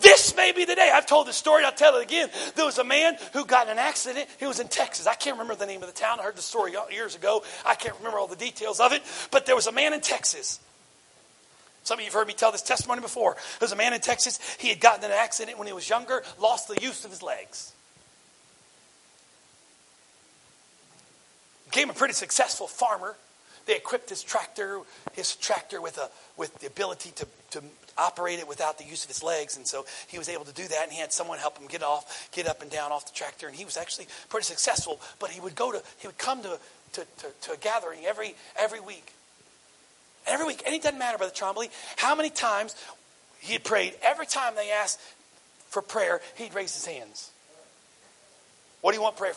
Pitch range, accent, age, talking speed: 165-275 Hz, American, 40-59, 230 wpm